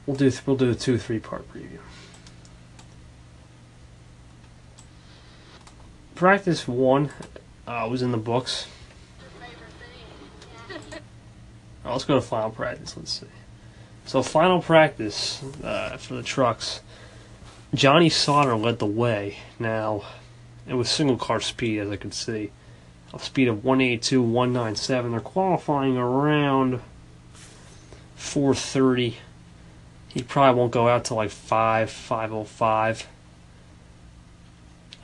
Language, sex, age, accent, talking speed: English, male, 20-39, American, 115 wpm